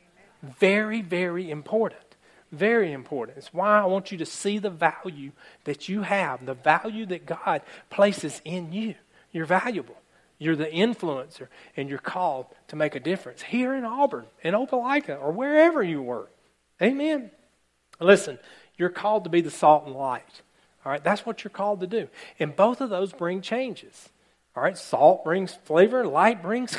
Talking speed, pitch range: 170 wpm, 150-210 Hz